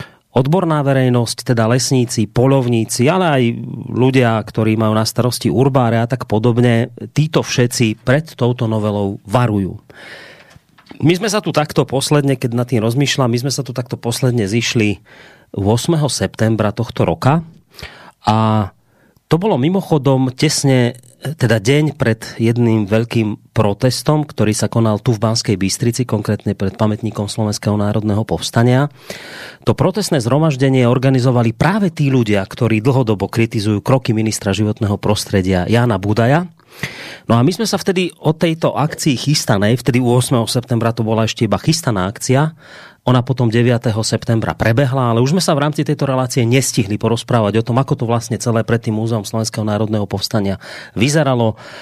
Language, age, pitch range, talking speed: Slovak, 30-49, 110-140 Hz, 150 wpm